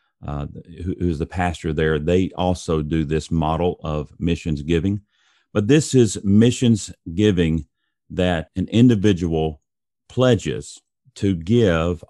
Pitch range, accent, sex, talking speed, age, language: 85-105 Hz, American, male, 120 wpm, 40-59, English